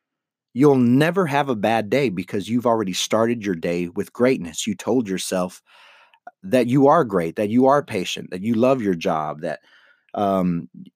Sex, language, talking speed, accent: male, English, 175 wpm, American